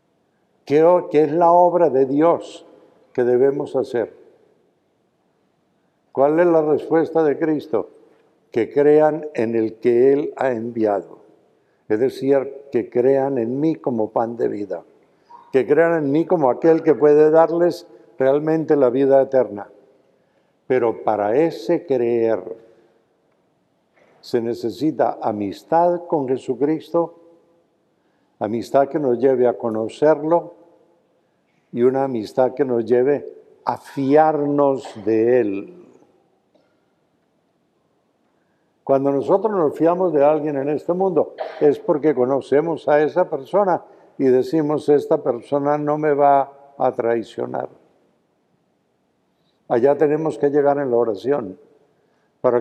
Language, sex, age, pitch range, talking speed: Spanish, male, 60-79, 130-165 Hz, 115 wpm